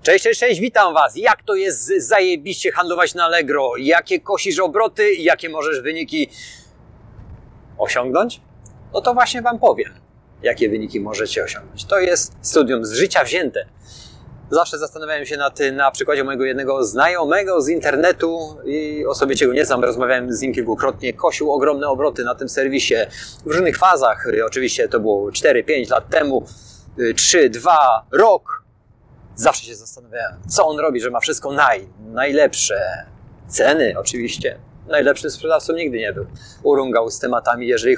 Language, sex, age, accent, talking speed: Polish, male, 30-49, native, 150 wpm